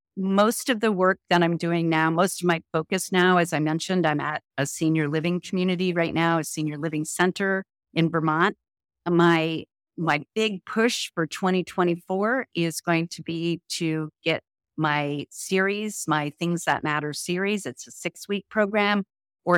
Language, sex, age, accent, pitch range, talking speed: English, female, 50-69, American, 165-200 Hz, 165 wpm